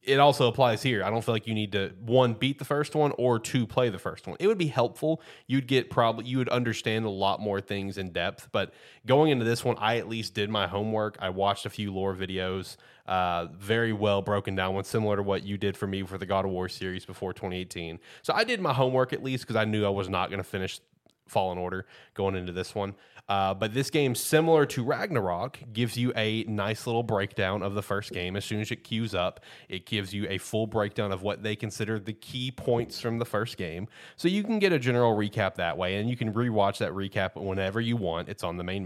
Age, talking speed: 20-39, 250 wpm